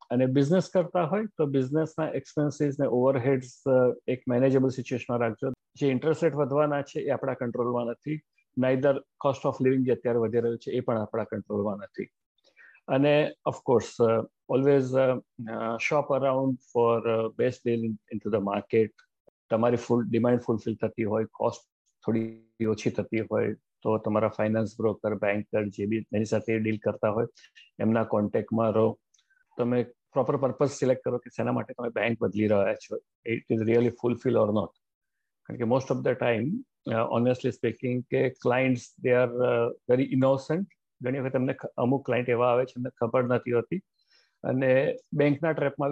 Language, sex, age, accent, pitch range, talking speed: Gujarati, male, 50-69, native, 115-140 Hz, 155 wpm